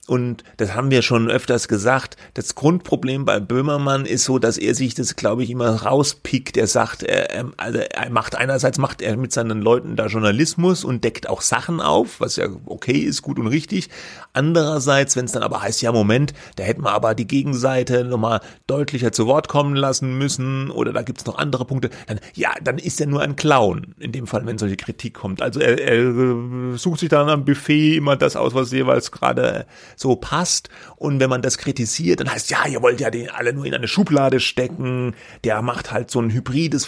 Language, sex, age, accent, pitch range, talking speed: German, male, 30-49, German, 115-140 Hz, 215 wpm